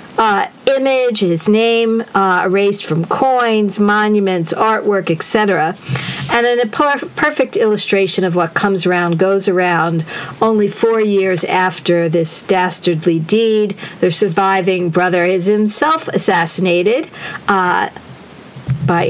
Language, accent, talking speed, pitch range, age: English, American, 115 wpm, 185-225 Hz, 50-69